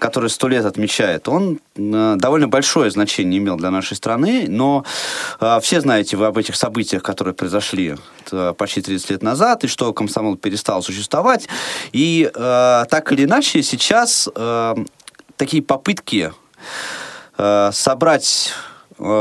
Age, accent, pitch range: 20-39, native, 100-135 Hz